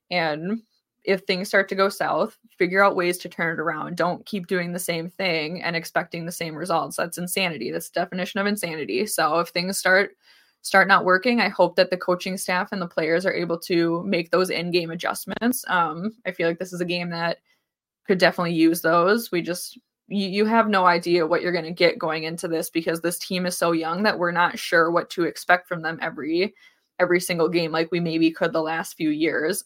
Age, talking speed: 20-39, 225 wpm